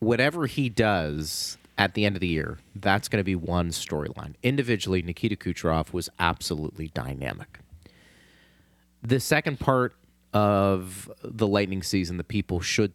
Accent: American